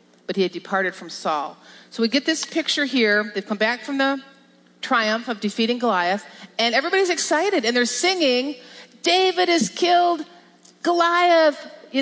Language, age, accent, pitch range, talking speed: English, 40-59, American, 205-315 Hz, 160 wpm